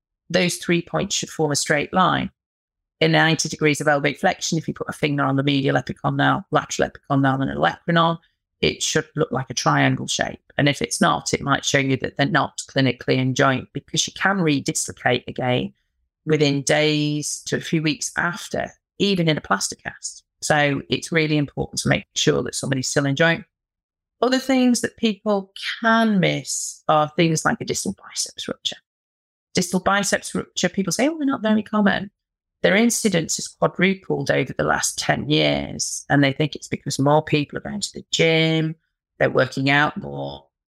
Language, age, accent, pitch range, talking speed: English, 40-59, British, 140-185 Hz, 185 wpm